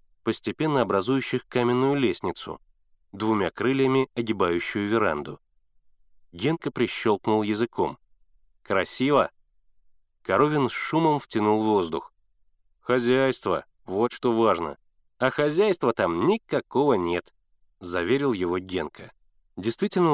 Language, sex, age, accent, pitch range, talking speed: Russian, male, 30-49, native, 105-140 Hz, 90 wpm